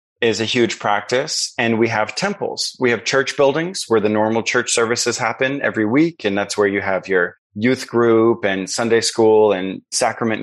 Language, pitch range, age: English, 105-120 Hz, 30-49